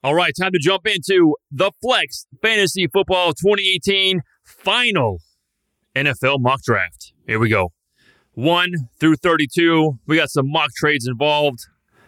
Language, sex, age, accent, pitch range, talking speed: English, male, 30-49, American, 130-170 Hz, 135 wpm